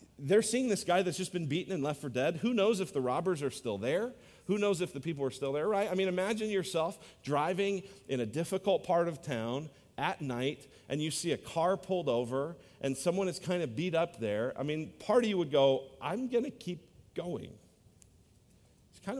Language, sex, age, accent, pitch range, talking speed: English, male, 40-59, American, 130-185 Hz, 220 wpm